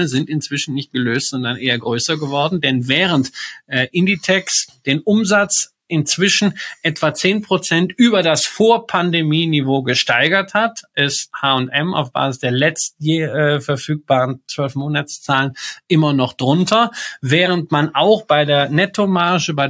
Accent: German